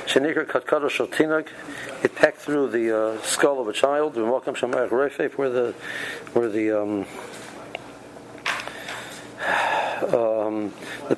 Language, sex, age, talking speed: English, male, 60-79, 85 wpm